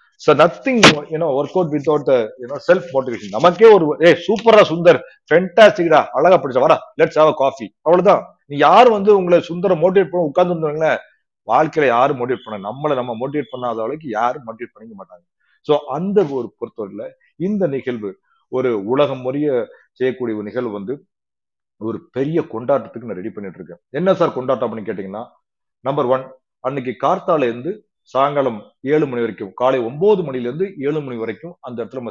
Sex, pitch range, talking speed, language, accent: male, 125-185 Hz, 135 wpm, Tamil, native